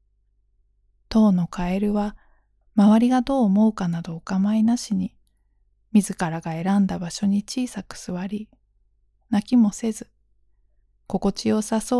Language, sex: Japanese, female